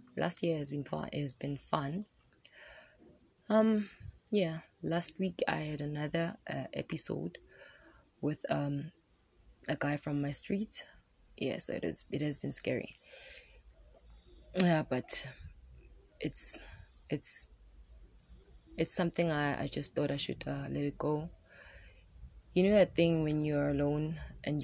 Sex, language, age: female, English, 20-39